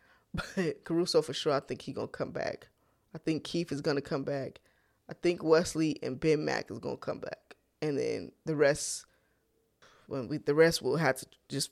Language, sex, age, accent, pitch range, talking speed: English, female, 20-39, American, 145-175 Hz, 200 wpm